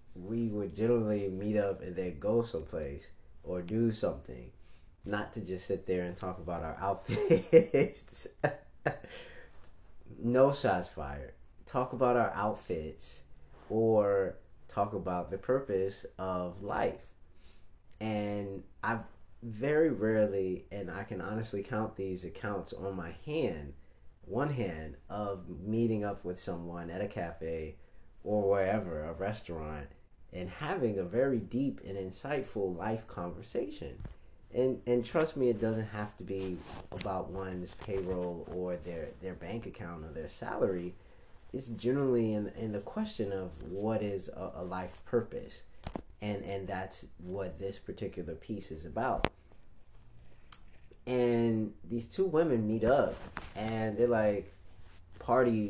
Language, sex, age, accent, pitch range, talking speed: English, male, 30-49, American, 90-110 Hz, 135 wpm